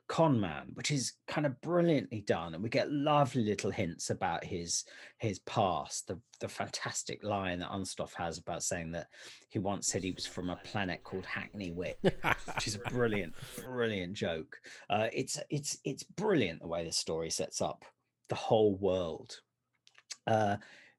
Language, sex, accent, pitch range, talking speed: English, male, British, 100-150 Hz, 170 wpm